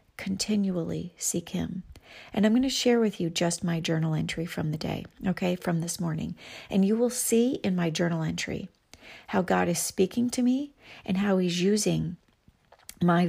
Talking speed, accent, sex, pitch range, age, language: 180 wpm, American, female, 170-200 Hz, 40-59, English